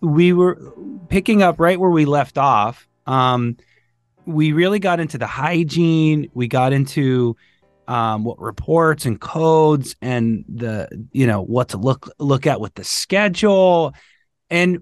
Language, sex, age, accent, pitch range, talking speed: English, male, 30-49, American, 125-165 Hz, 150 wpm